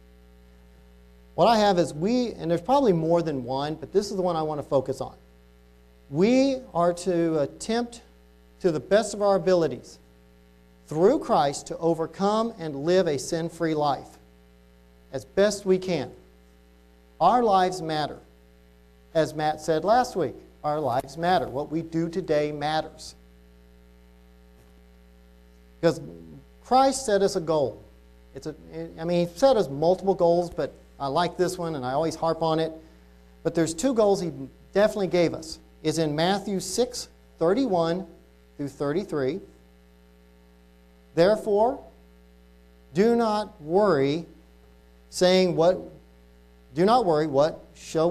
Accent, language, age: American, English, 50-69